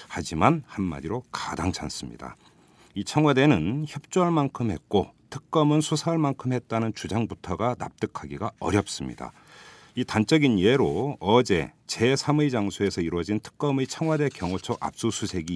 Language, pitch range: Korean, 85-130 Hz